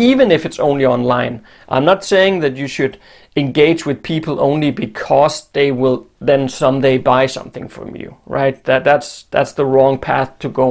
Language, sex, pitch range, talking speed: English, male, 130-165 Hz, 185 wpm